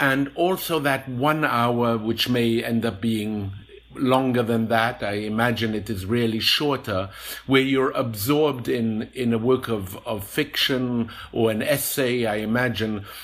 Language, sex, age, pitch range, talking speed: English, male, 50-69, 110-135 Hz, 155 wpm